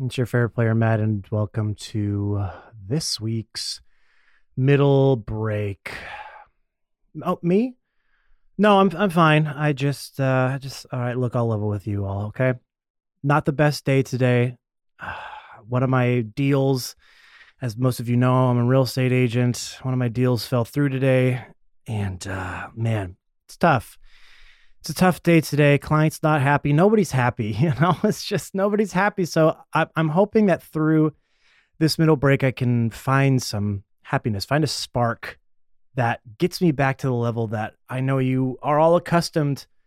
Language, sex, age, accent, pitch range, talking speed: English, male, 30-49, American, 120-160 Hz, 165 wpm